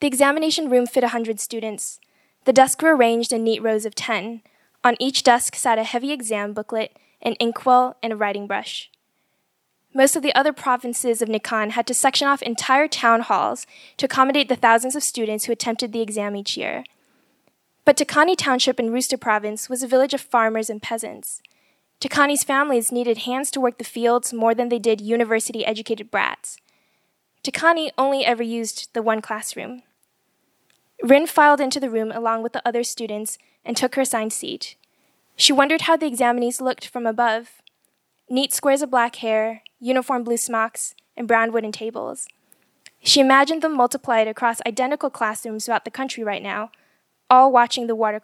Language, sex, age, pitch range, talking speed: English, female, 10-29, 225-270 Hz, 175 wpm